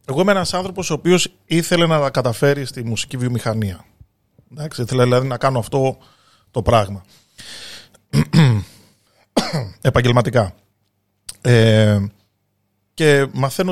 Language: Greek